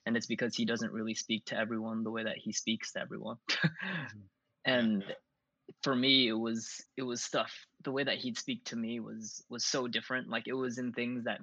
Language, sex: English, male